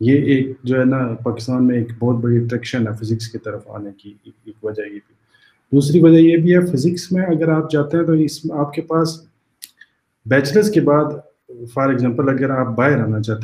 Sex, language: male, Urdu